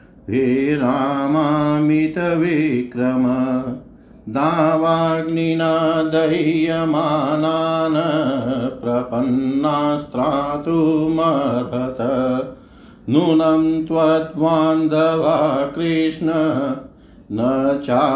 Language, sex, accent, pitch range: Hindi, male, native, 130-160 Hz